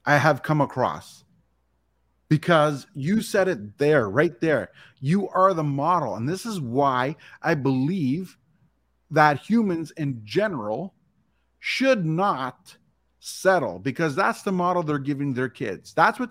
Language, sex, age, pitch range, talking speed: English, male, 30-49, 125-185 Hz, 140 wpm